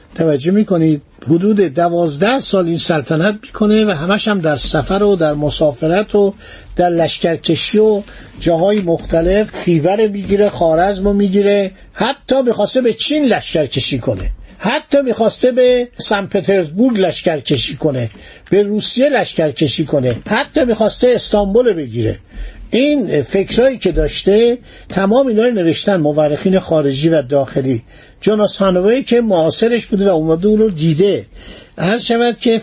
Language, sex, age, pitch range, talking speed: Persian, male, 50-69, 165-220 Hz, 130 wpm